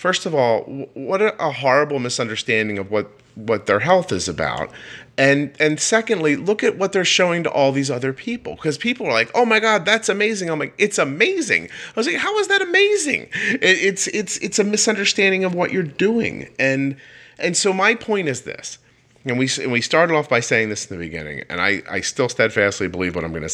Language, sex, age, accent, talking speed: English, male, 30-49, American, 220 wpm